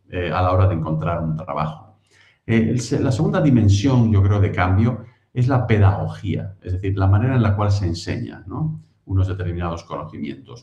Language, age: Spanish, 50-69